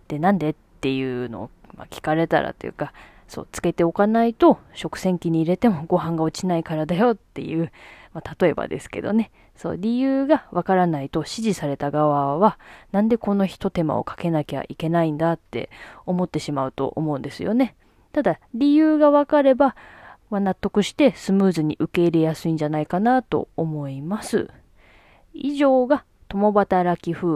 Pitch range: 160-230 Hz